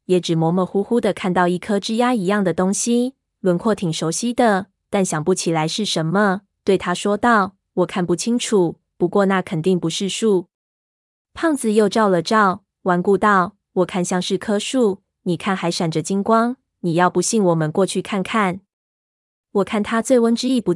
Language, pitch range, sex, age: Chinese, 175-210 Hz, female, 20-39